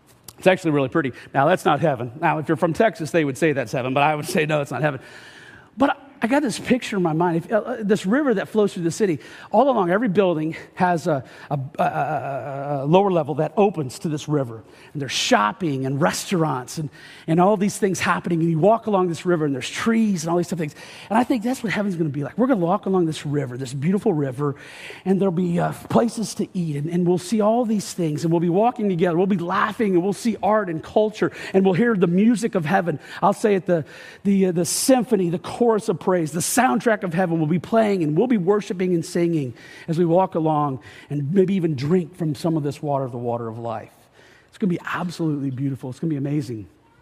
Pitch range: 150-200 Hz